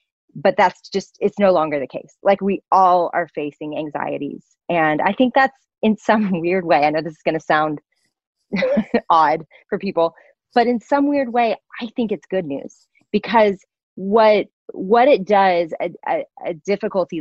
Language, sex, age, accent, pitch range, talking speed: English, female, 30-49, American, 165-210 Hz, 180 wpm